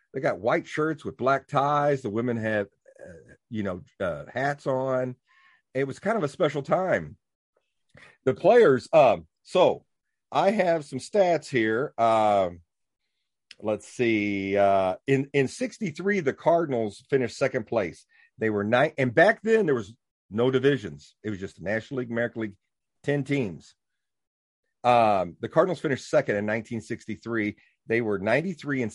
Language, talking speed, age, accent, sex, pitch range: English, 155 wpm, 50-69, American, male, 105-135 Hz